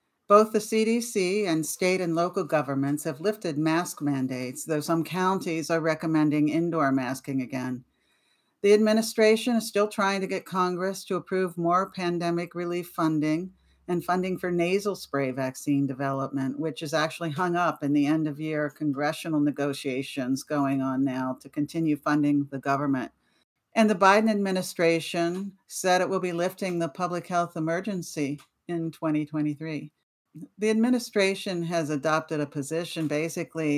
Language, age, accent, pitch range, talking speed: English, 50-69, American, 145-180 Hz, 145 wpm